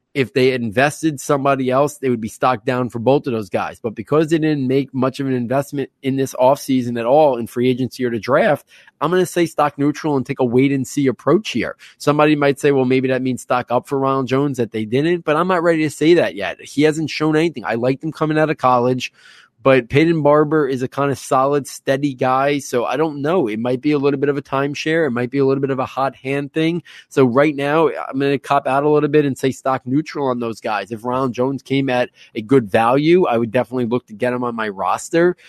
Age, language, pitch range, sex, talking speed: 20-39, English, 125-145 Hz, male, 260 wpm